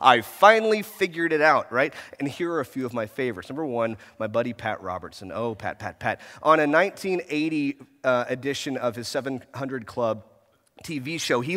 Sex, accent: male, American